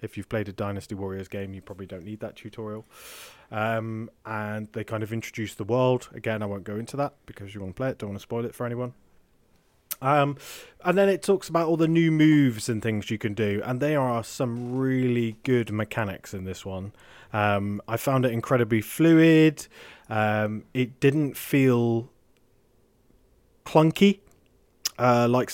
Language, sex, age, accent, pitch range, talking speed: English, male, 20-39, British, 105-135 Hz, 185 wpm